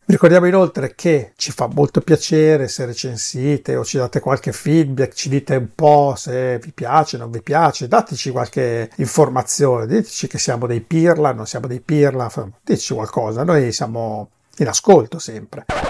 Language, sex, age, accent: Italian, male, 50-69, native